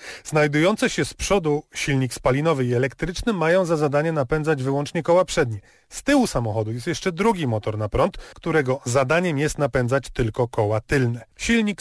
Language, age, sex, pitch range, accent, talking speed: Polish, 30-49, male, 125-170 Hz, native, 165 wpm